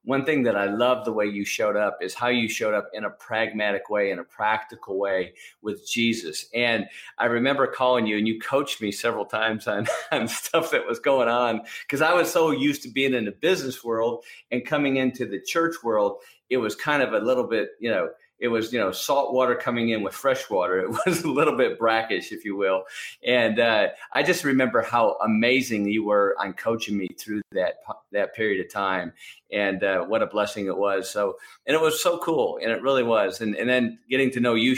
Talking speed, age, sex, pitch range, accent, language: 225 wpm, 40-59, male, 105-130 Hz, American, English